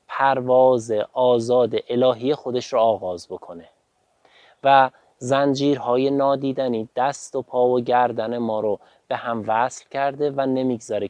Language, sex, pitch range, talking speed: Persian, male, 115-140 Hz, 125 wpm